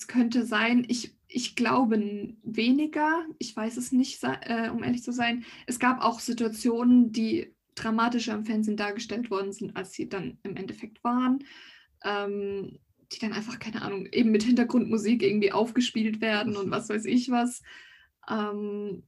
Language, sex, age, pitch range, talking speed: German, female, 20-39, 215-240 Hz, 160 wpm